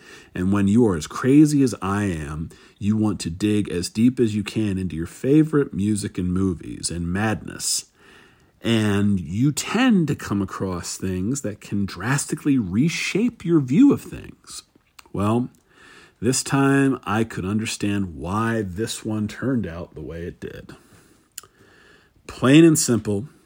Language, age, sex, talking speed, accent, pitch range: English, 50-69, male, 150 wpm, American, 95-120 Hz